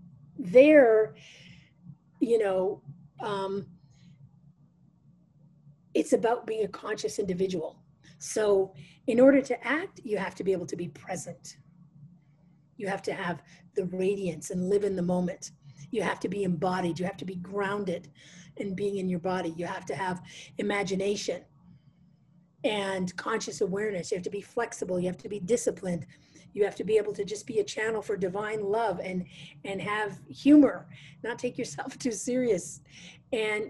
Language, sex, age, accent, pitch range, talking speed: English, female, 40-59, American, 165-235 Hz, 160 wpm